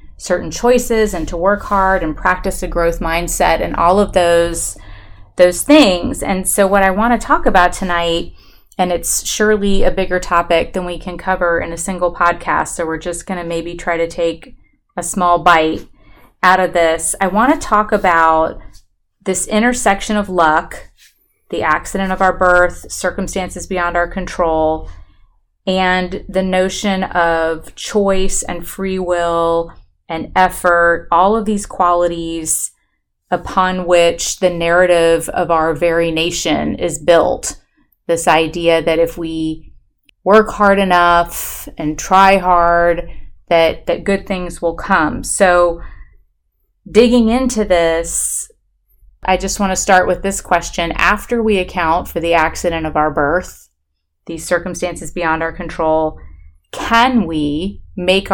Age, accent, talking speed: 30-49, American, 145 wpm